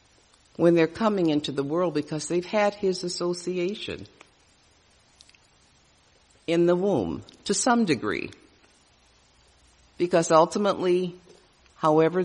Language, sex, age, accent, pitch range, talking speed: English, female, 50-69, American, 110-175 Hz, 100 wpm